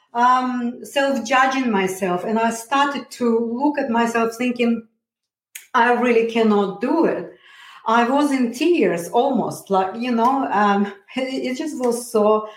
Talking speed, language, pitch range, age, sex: 145 wpm, English, 215-260 Hz, 40-59, female